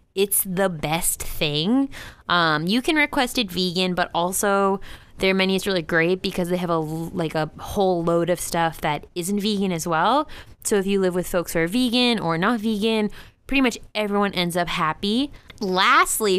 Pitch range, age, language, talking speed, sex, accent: 170-215 Hz, 20-39, English, 185 wpm, female, American